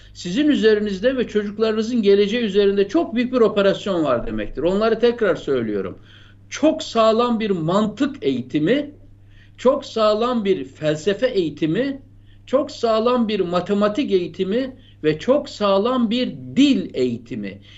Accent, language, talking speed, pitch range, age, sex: native, Turkish, 120 wpm, 170-255 Hz, 60-79, male